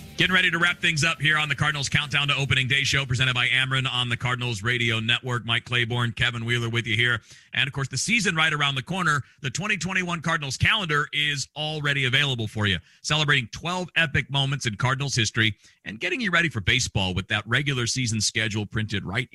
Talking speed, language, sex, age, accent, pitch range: 210 wpm, English, male, 40-59, American, 110-135 Hz